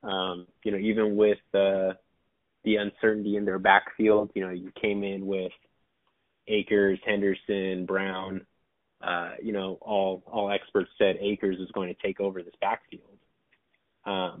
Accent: American